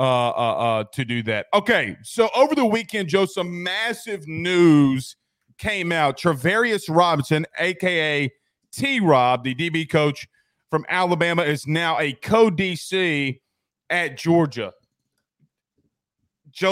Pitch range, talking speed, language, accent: 150-195 Hz, 120 wpm, English, American